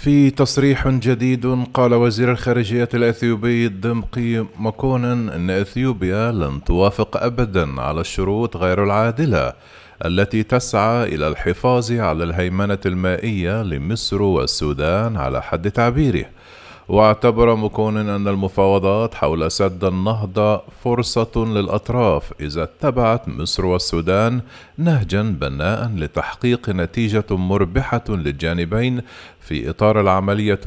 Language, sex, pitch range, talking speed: Arabic, male, 90-115 Hz, 100 wpm